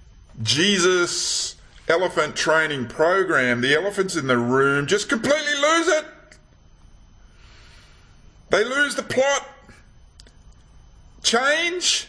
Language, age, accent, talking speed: English, 50-69, Australian, 90 wpm